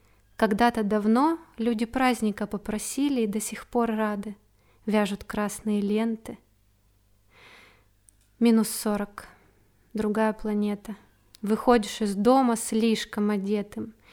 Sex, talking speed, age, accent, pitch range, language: female, 95 wpm, 20-39, native, 205-230 Hz, Russian